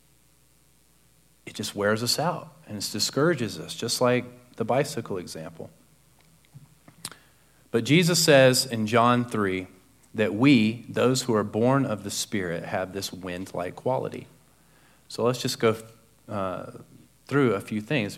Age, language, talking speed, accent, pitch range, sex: 40-59, English, 140 wpm, American, 95-125 Hz, male